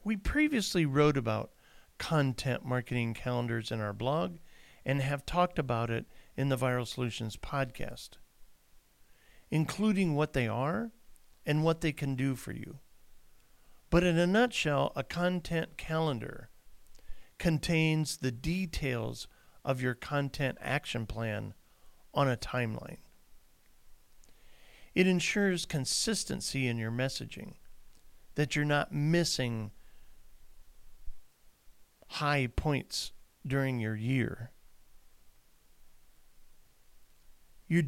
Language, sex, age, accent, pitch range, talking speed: English, male, 50-69, American, 115-155 Hz, 105 wpm